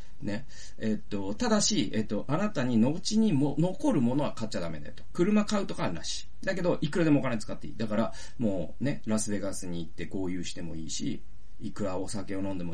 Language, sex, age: Japanese, male, 40-59